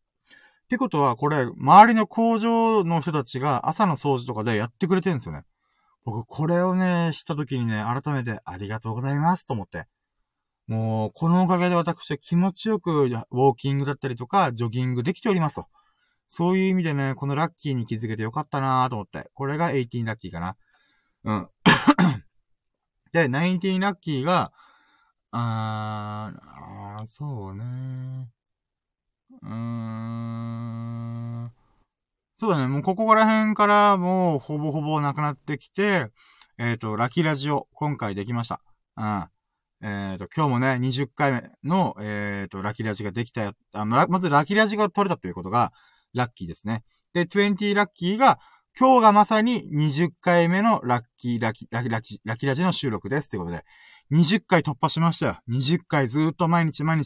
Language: Japanese